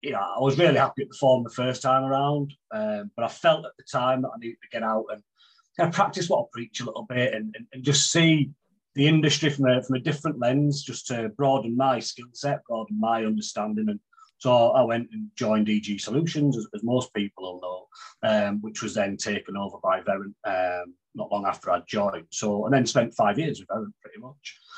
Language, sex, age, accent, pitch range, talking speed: English, male, 30-49, British, 110-145 Hz, 230 wpm